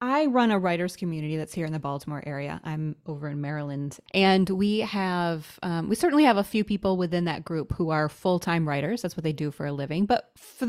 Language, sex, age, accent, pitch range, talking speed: English, female, 20-39, American, 155-205 Hz, 220 wpm